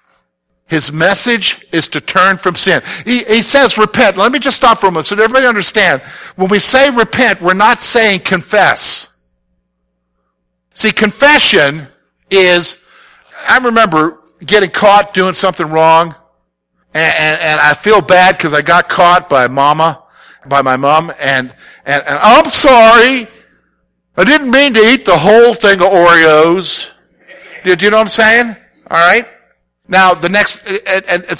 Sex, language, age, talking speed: male, English, 50-69, 155 wpm